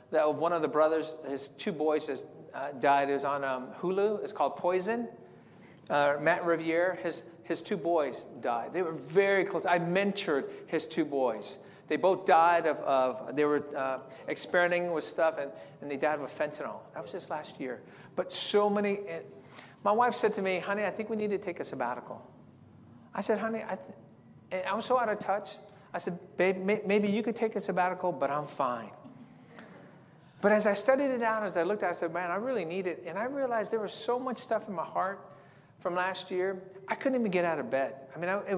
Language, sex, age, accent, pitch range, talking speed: English, male, 40-59, American, 150-205 Hz, 220 wpm